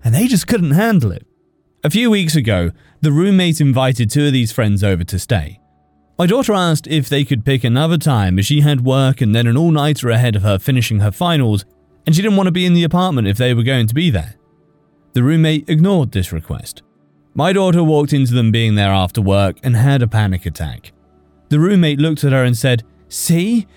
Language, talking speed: English, 215 wpm